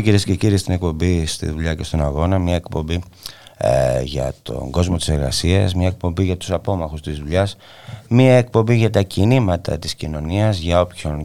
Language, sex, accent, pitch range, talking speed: Greek, male, Spanish, 80-105 Hz, 180 wpm